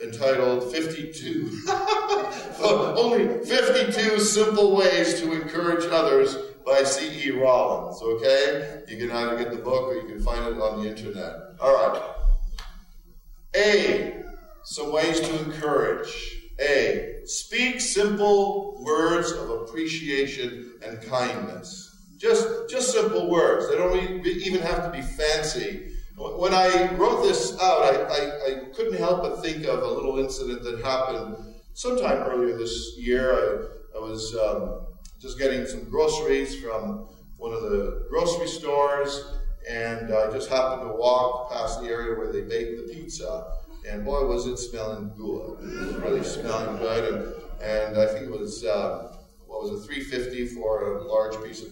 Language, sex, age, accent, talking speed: English, male, 50-69, American, 150 wpm